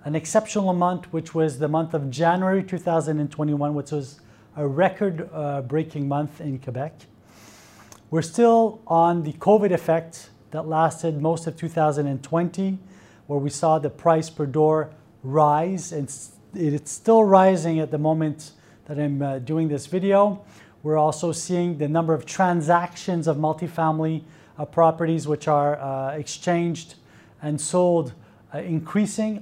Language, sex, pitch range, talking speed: French, male, 145-170 Hz, 140 wpm